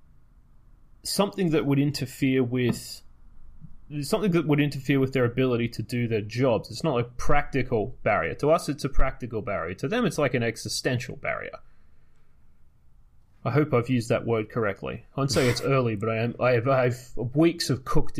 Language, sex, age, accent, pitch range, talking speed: English, male, 30-49, Australian, 115-145 Hz, 170 wpm